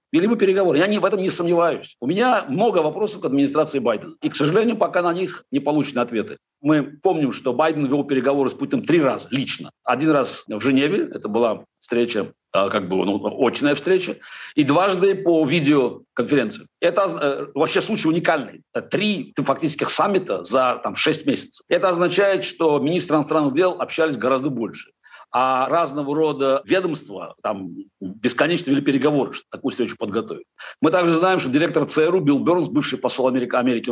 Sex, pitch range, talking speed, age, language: male, 135-180 Hz, 170 wpm, 60-79, Russian